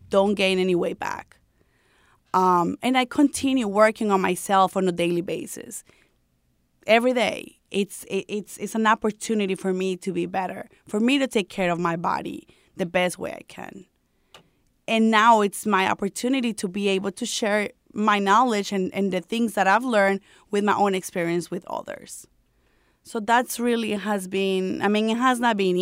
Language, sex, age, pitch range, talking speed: English, female, 20-39, 190-235 Hz, 180 wpm